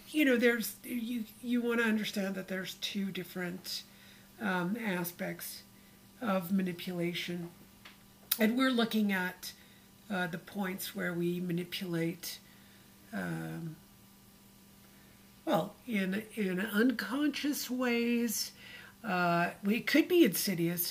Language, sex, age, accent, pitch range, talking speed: English, female, 50-69, American, 175-220 Hz, 105 wpm